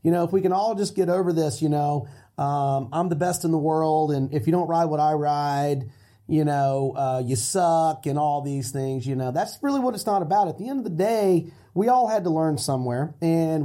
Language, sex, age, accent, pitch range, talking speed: English, male, 30-49, American, 140-195 Hz, 250 wpm